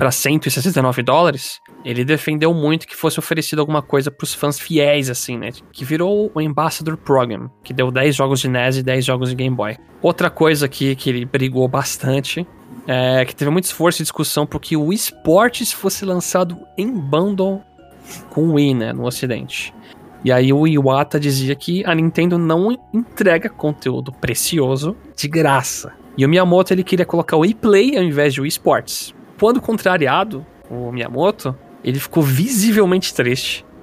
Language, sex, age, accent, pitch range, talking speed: Portuguese, male, 20-39, Brazilian, 130-165 Hz, 170 wpm